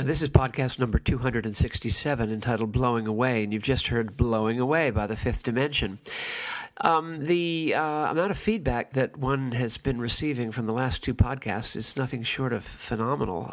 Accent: American